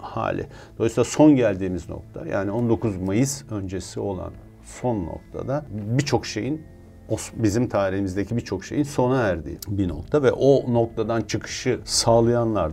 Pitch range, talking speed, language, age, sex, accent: 95-120 Hz, 125 wpm, Turkish, 50-69, male, native